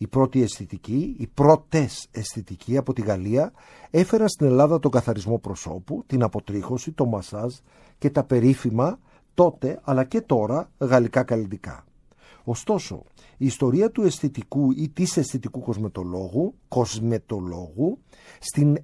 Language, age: Greek, 50-69